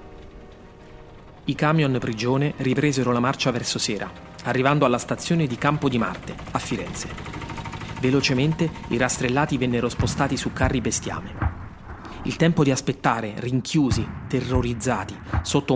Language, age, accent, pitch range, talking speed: Italian, 30-49, native, 120-145 Hz, 120 wpm